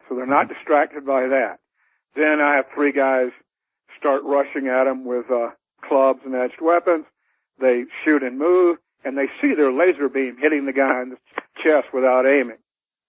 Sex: male